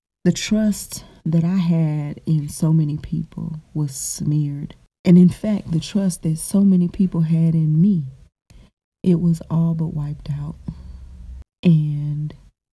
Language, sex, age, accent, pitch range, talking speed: English, female, 30-49, American, 150-175 Hz, 140 wpm